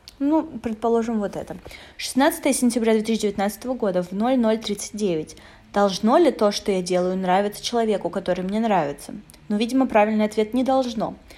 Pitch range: 190-235 Hz